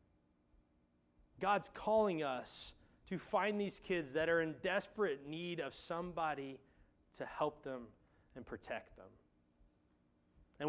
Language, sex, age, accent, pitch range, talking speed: English, male, 30-49, American, 100-165 Hz, 120 wpm